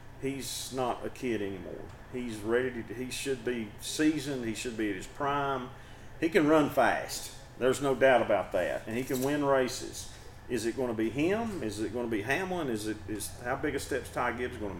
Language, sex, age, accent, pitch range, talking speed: English, male, 40-59, American, 110-135 Hz, 225 wpm